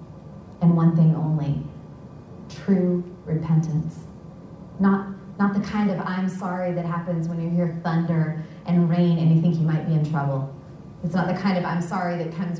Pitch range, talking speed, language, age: 160-180 Hz, 180 wpm, English, 30-49